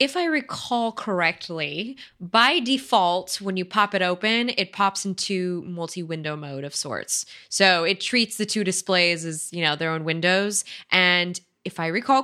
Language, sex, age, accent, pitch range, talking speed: English, female, 20-39, American, 170-220 Hz, 165 wpm